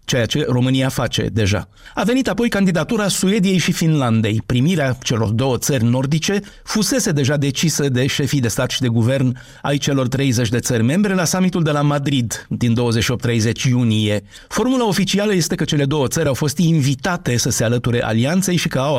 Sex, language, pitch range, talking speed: male, Romanian, 125-170 Hz, 185 wpm